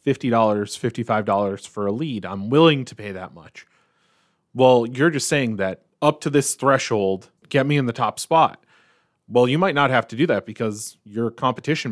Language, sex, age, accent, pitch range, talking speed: English, male, 30-49, American, 110-135 Hz, 175 wpm